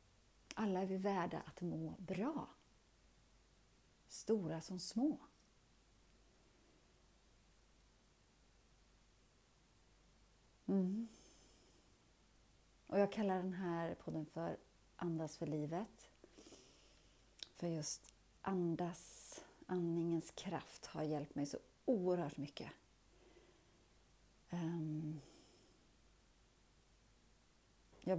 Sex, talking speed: female, 70 wpm